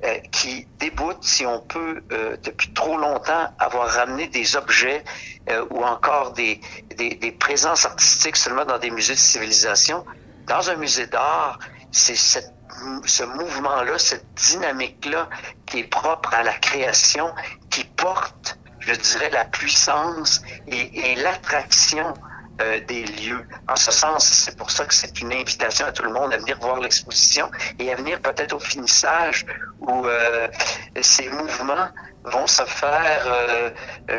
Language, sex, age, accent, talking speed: French, male, 60-79, Canadian, 155 wpm